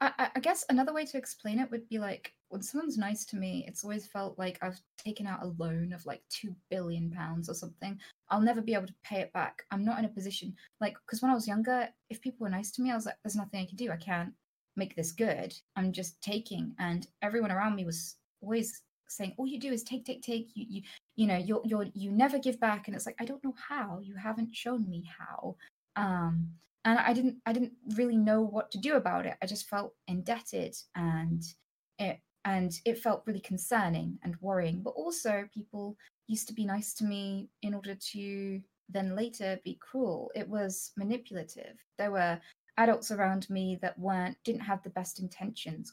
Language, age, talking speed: English, 20-39, 215 wpm